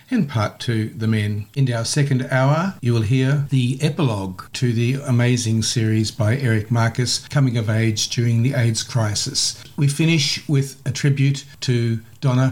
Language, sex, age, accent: English, male, 50-69, Australian